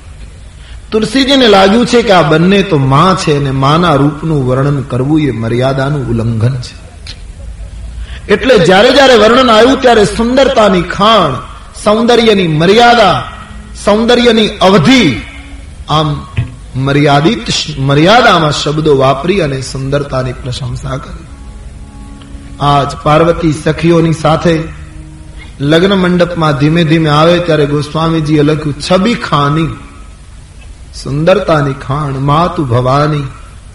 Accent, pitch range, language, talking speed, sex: native, 125-165 Hz, Gujarati, 50 wpm, male